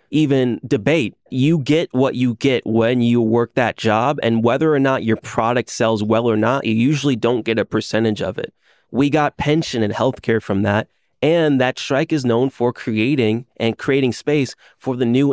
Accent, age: American, 30-49